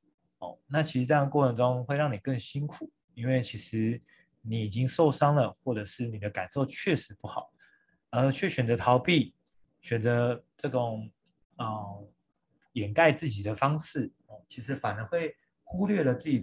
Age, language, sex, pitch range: 20-39, Chinese, male, 110-140 Hz